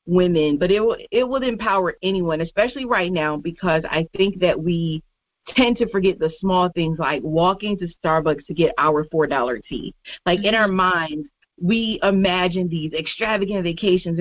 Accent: American